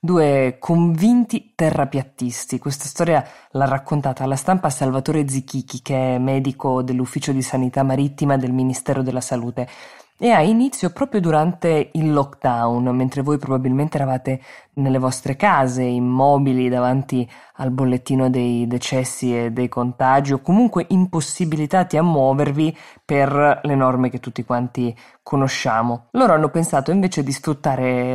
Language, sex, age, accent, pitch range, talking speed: Italian, female, 20-39, native, 130-160 Hz, 135 wpm